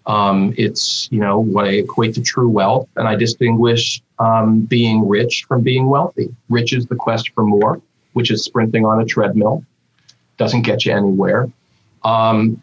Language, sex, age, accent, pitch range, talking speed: English, male, 40-59, American, 110-130 Hz, 170 wpm